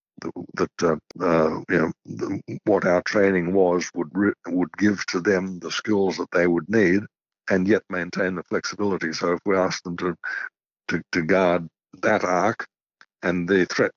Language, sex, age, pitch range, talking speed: English, male, 60-79, 85-100 Hz, 170 wpm